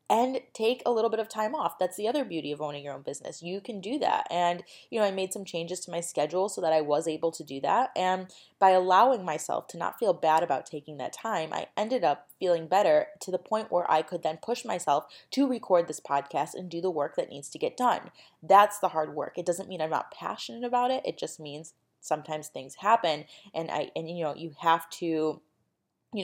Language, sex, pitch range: English, female, 165-215 Hz